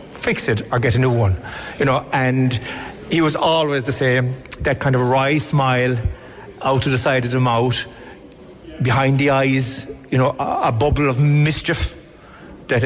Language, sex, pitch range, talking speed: English, male, 120-145 Hz, 180 wpm